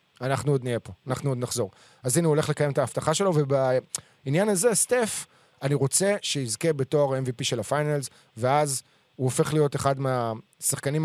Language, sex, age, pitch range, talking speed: Hebrew, male, 30-49, 125-165 Hz, 170 wpm